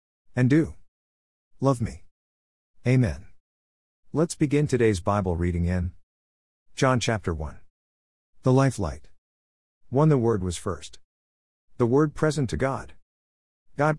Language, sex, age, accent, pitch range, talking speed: English, male, 50-69, American, 75-125 Hz, 120 wpm